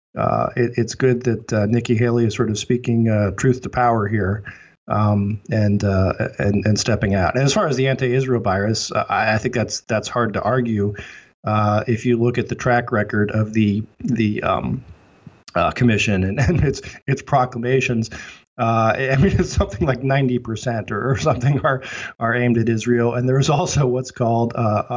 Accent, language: American, English